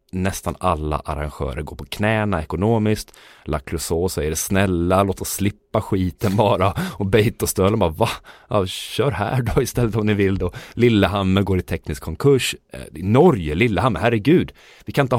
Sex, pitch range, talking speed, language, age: male, 85-120 Hz, 165 wpm, Swedish, 30-49